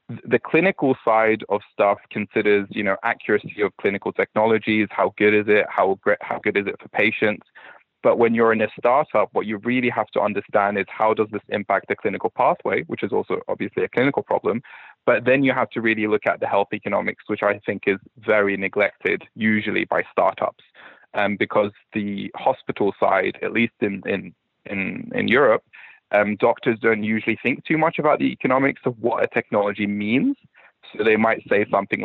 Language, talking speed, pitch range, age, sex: English, 195 wpm, 105-120 Hz, 20-39, male